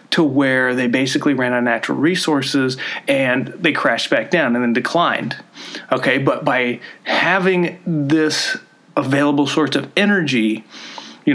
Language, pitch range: English, 130-165 Hz